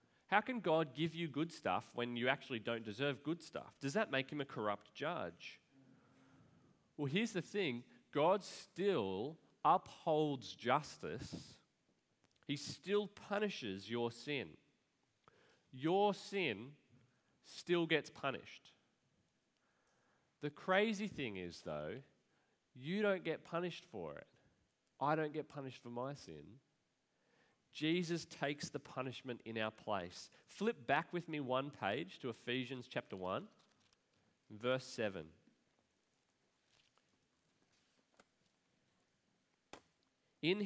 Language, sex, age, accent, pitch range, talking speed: English, male, 30-49, Australian, 120-165 Hz, 115 wpm